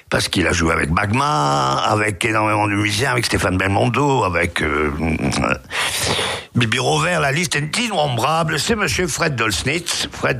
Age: 50-69